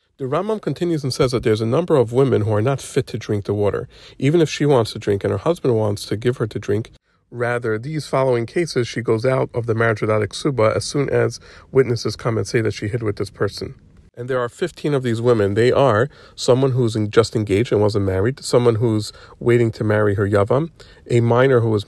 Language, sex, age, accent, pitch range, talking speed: English, male, 40-59, American, 105-130 Hz, 240 wpm